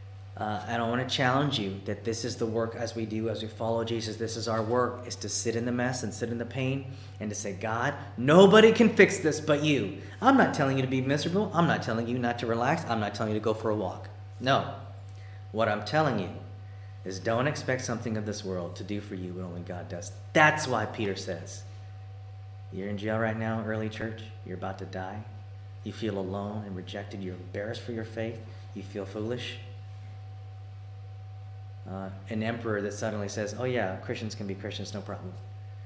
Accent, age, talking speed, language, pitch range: American, 40-59, 215 wpm, English, 100-115 Hz